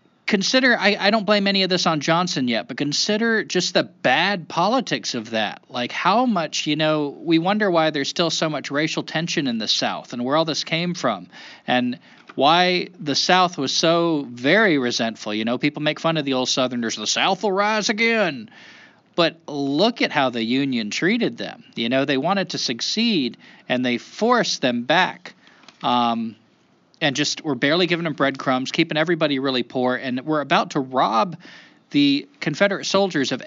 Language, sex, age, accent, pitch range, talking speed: English, male, 40-59, American, 130-195 Hz, 185 wpm